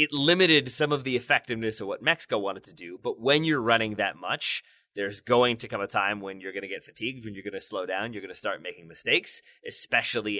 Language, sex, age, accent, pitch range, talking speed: English, male, 20-39, American, 110-150 Hz, 250 wpm